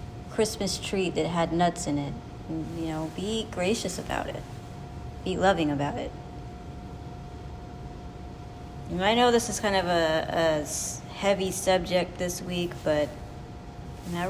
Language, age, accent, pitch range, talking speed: English, 30-49, American, 155-180 Hz, 135 wpm